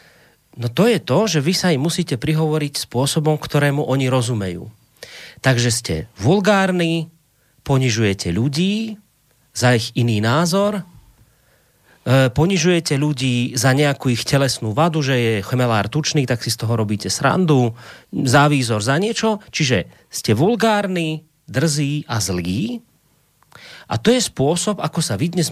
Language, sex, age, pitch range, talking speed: Slovak, male, 30-49, 125-170 Hz, 135 wpm